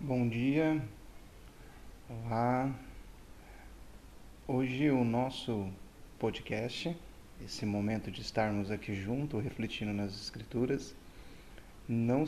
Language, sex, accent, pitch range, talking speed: Portuguese, male, Brazilian, 110-145 Hz, 85 wpm